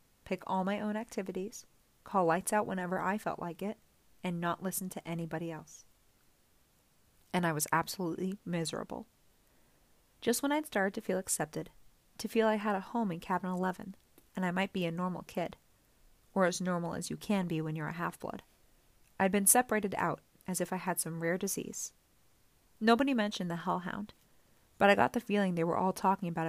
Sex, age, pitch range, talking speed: female, 30-49, 170-210 Hz, 190 wpm